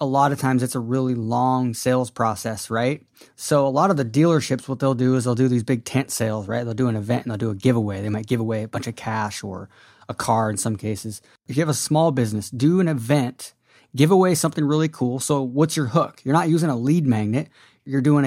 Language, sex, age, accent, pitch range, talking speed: English, male, 20-39, American, 120-150 Hz, 255 wpm